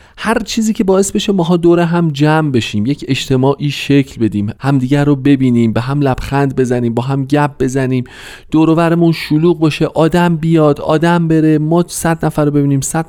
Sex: male